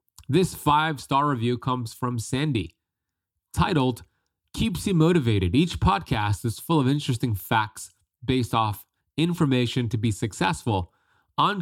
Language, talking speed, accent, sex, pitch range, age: English, 125 wpm, American, male, 105-130 Hz, 30-49